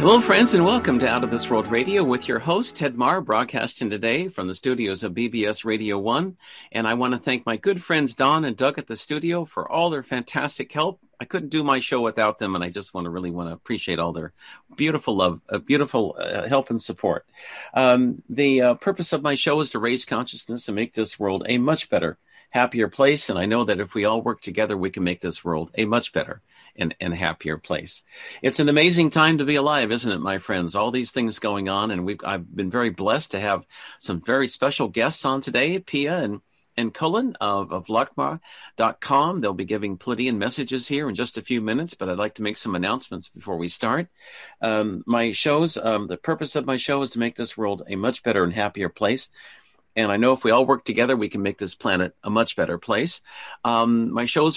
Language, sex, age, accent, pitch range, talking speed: English, male, 50-69, American, 105-140 Hz, 230 wpm